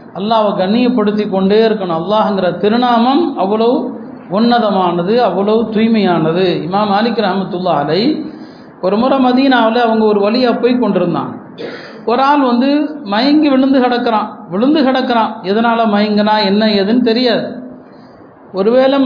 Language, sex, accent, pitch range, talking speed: Tamil, male, native, 215-255 Hz, 115 wpm